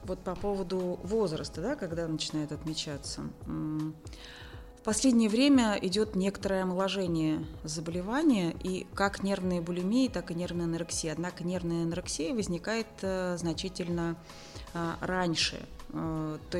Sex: female